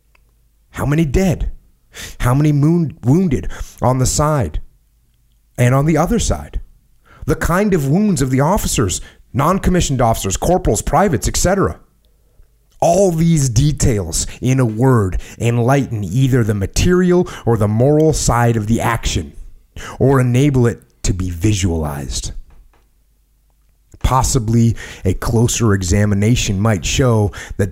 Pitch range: 90-135 Hz